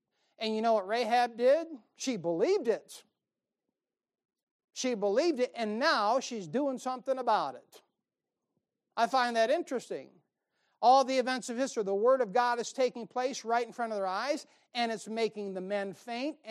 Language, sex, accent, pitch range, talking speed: English, male, American, 195-245 Hz, 175 wpm